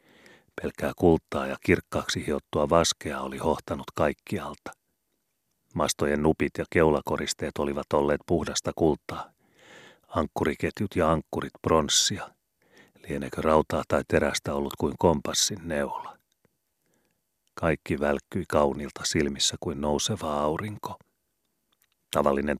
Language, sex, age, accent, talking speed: Finnish, male, 40-59, native, 100 wpm